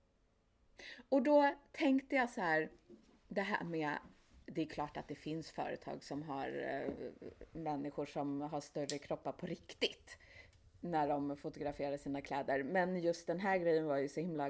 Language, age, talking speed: Swedish, 30-49, 160 wpm